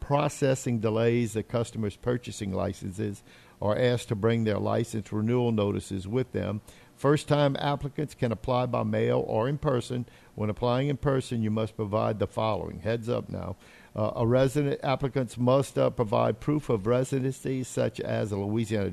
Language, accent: English, American